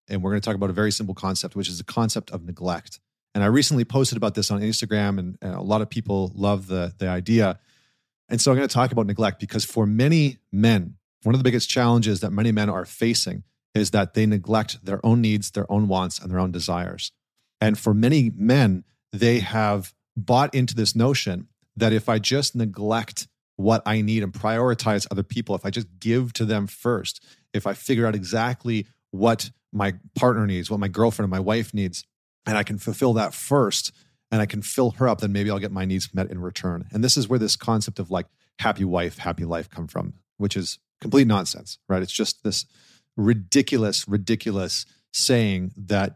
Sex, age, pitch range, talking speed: male, 30-49, 100-115 Hz, 210 wpm